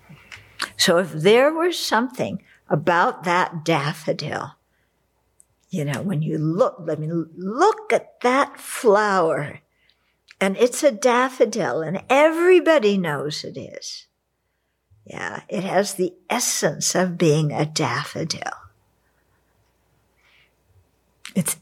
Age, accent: 60-79, American